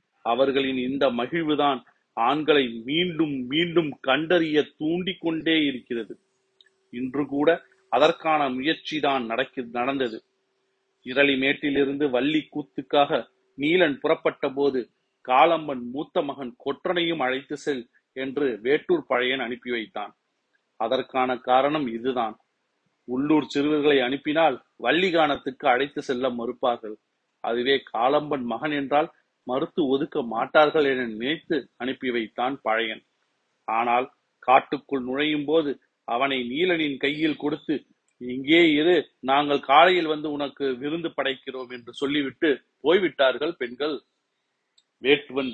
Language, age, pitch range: Tamil, 40-59, 130-160 Hz